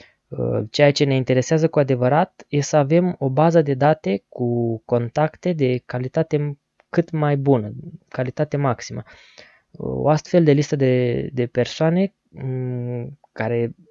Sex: female